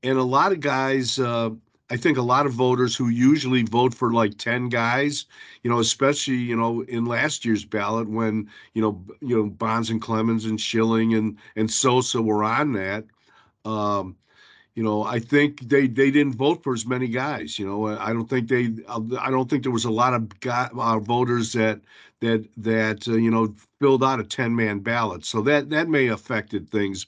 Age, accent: 50-69, American